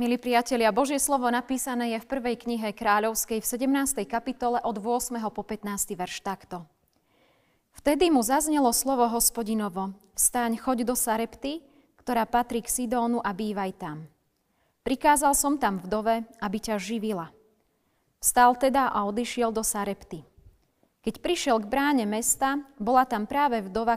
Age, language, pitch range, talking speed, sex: 30-49, Slovak, 210-260 Hz, 145 wpm, female